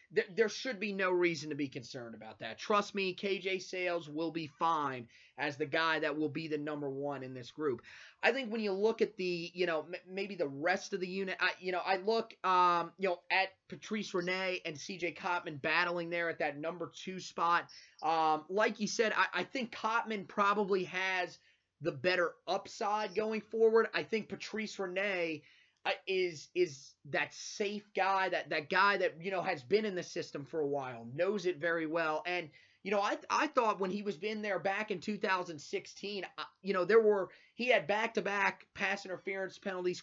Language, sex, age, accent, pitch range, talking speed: English, male, 30-49, American, 165-200 Hz, 195 wpm